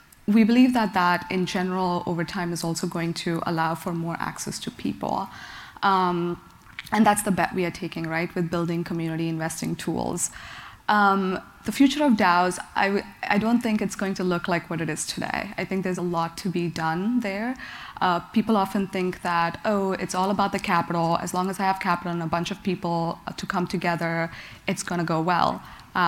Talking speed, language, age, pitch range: 205 wpm, English, 20-39, 170-200 Hz